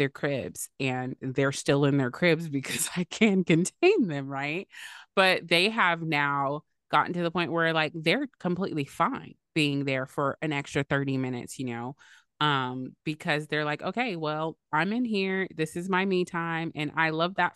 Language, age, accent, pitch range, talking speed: English, 30-49, American, 130-165 Hz, 185 wpm